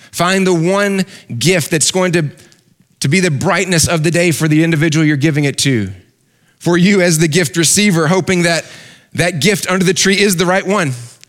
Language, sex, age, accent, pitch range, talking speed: English, male, 30-49, American, 135-175 Hz, 200 wpm